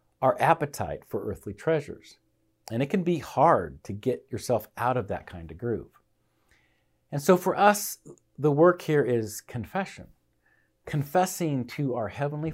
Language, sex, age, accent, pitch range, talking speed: English, male, 50-69, American, 105-155 Hz, 155 wpm